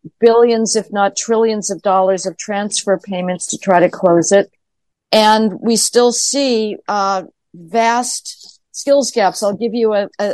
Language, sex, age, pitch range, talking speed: English, female, 50-69, 195-235 Hz, 150 wpm